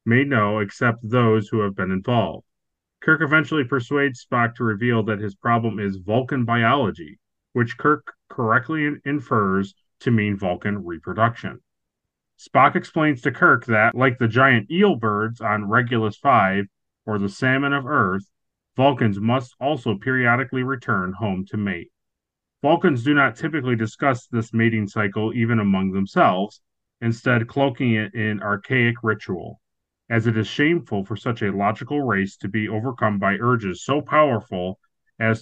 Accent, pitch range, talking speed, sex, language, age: American, 105-130 Hz, 150 wpm, male, English, 30-49